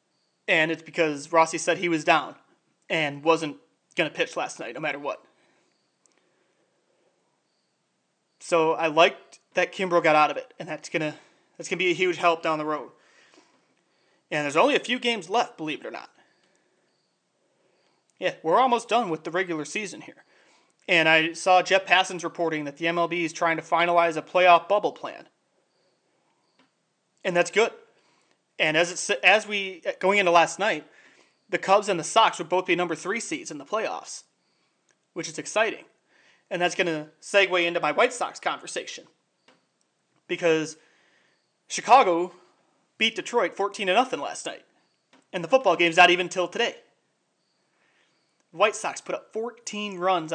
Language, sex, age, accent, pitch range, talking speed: English, male, 20-39, American, 160-195 Hz, 165 wpm